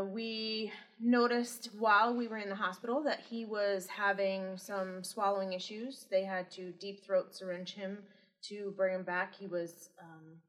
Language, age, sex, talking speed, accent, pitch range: English, 20-39, female, 165 wpm, American, 175-205 Hz